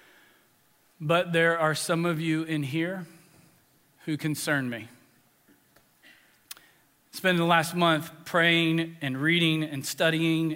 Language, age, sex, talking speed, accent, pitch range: English, 40-59, male, 115 wpm, American, 150-180 Hz